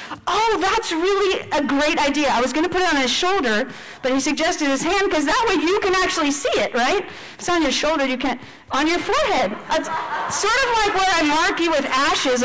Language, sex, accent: English, female, American